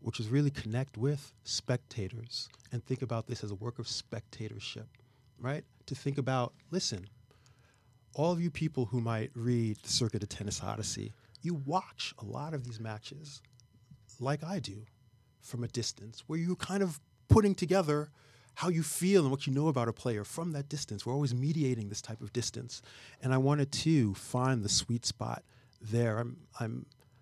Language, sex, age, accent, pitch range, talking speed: English, male, 40-59, American, 115-140 Hz, 180 wpm